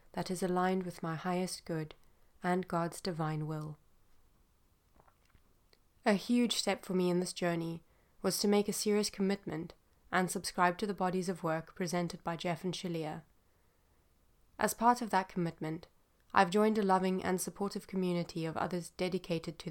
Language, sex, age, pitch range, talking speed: English, female, 20-39, 165-195 Hz, 160 wpm